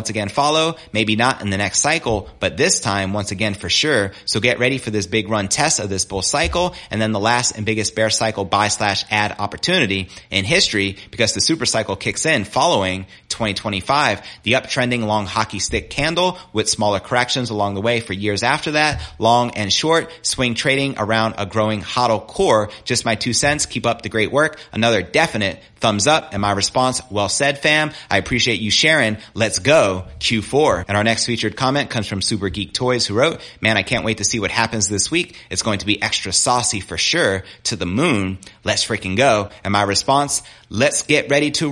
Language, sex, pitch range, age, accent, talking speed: English, male, 105-130 Hz, 30-49, American, 210 wpm